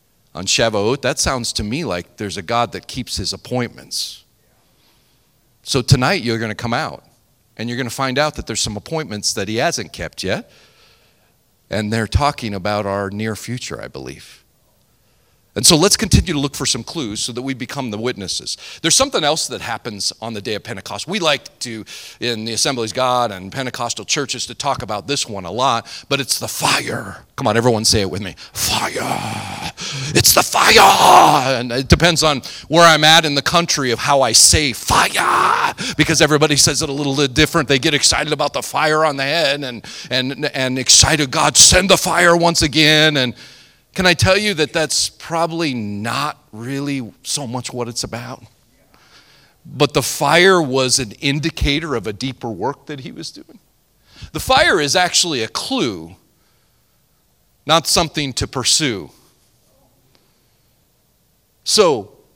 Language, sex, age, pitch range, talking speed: English, male, 40-59, 115-150 Hz, 175 wpm